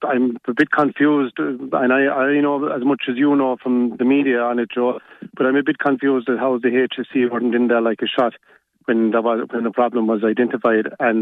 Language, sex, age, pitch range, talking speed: English, male, 40-59, 120-135 Hz, 230 wpm